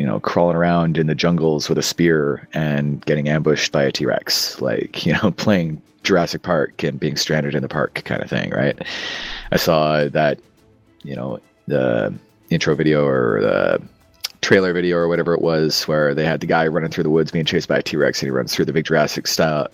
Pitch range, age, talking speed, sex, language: 75-90 Hz, 30-49, 215 wpm, male, English